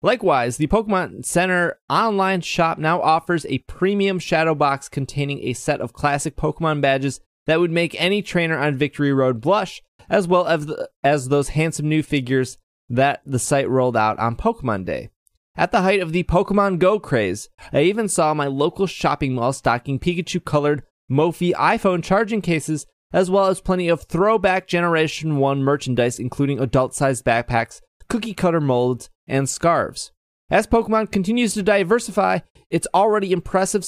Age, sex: 20-39, male